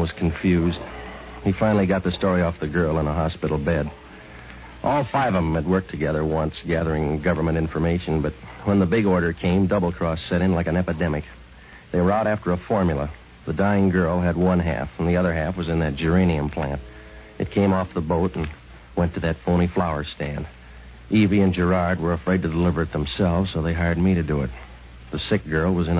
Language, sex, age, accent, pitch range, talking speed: English, male, 60-79, American, 75-90 Hz, 210 wpm